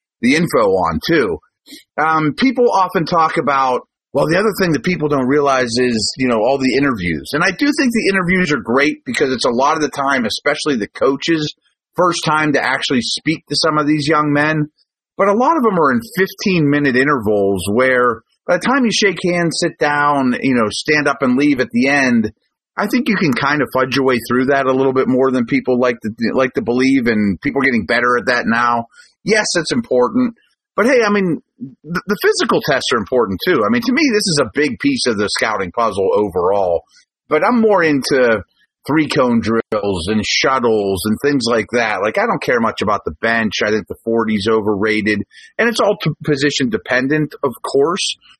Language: English